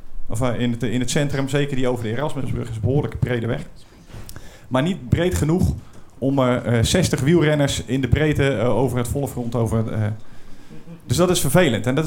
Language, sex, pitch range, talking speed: Dutch, male, 115-145 Hz, 195 wpm